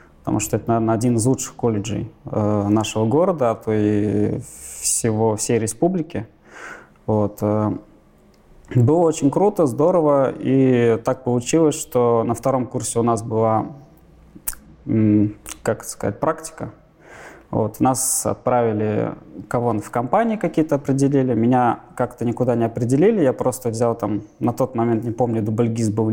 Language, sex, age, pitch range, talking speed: Russian, male, 20-39, 110-135 Hz, 135 wpm